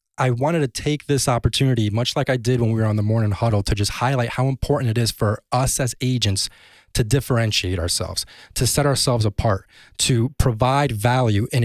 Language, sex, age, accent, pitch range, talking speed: English, male, 20-39, American, 105-135 Hz, 200 wpm